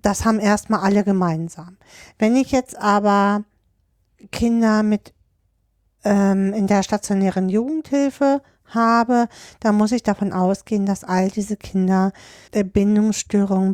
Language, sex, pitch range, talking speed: German, female, 160-225 Hz, 120 wpm